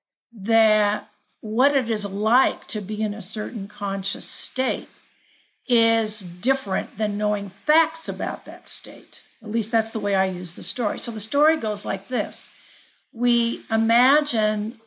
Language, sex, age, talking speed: English, female, 50-69, 150 wpm